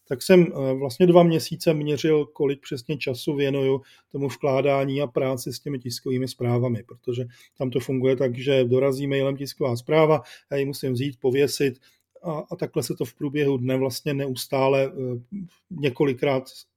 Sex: male